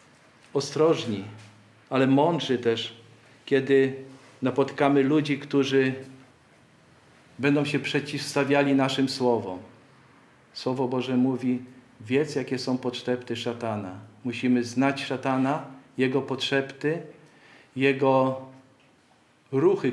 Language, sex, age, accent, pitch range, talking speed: Polish, male, 50-69, native, 120-140 Hz, 85 wpm